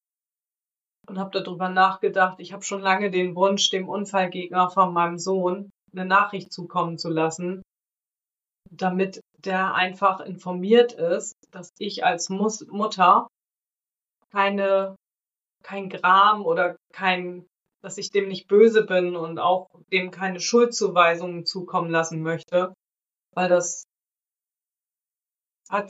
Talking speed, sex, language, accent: 120 wpm, female, German, German